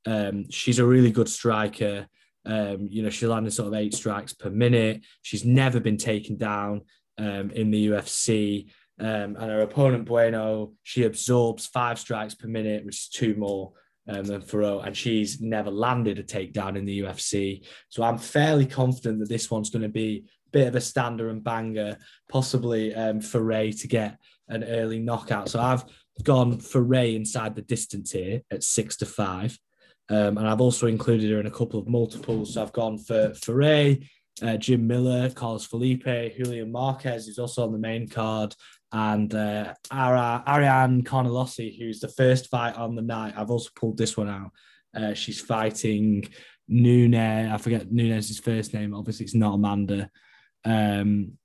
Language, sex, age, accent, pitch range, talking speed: English, male, 10-29, British, 105-120 Hz, 175 wpm